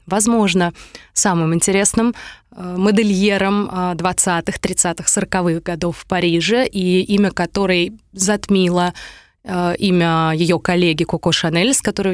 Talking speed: 105 wpm